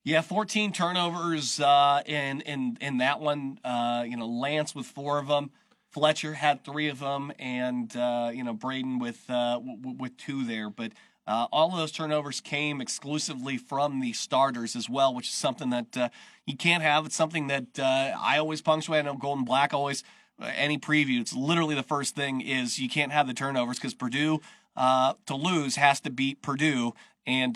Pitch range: 130-160 Hz